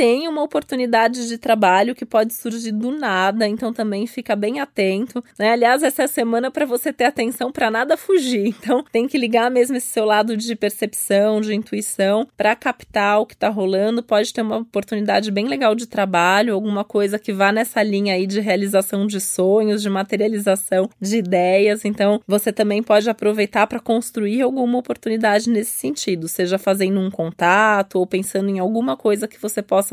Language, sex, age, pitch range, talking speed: Portuguese, female, 20-39, 200-245 Hz, 180 wpm